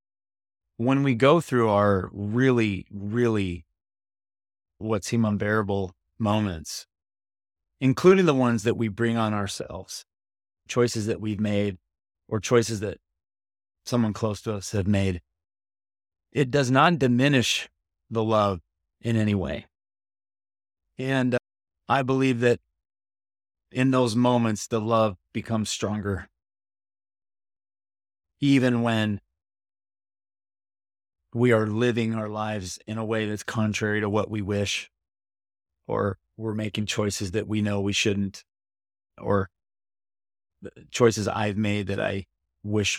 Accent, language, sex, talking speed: American, English, male, 120 wpm